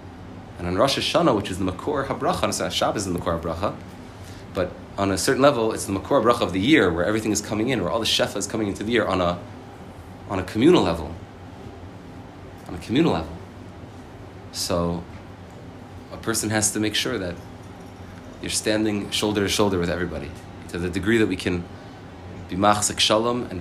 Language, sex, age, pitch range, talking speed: English, male, 30-49, 90-100 Hz, 195 wpm